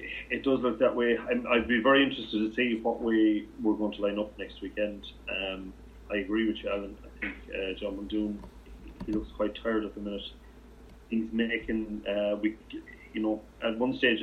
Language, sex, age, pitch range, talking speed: English, male, 30-49, 105-115 Hz, 200 wpm